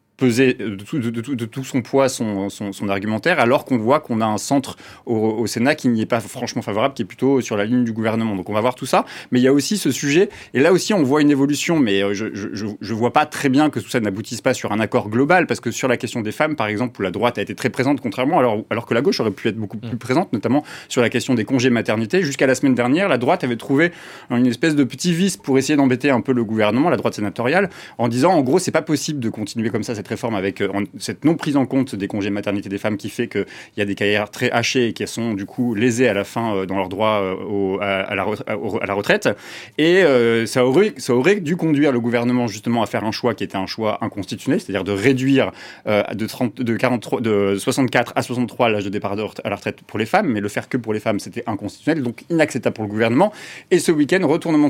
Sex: male